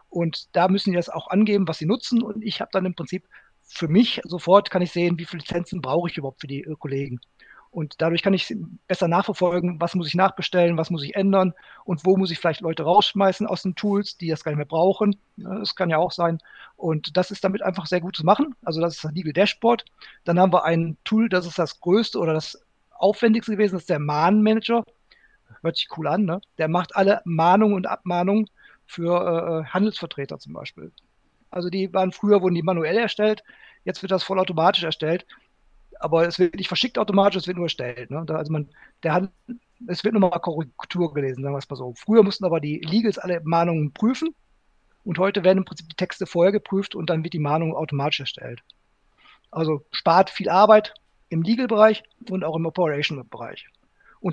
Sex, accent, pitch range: male, German, 165-200 Hz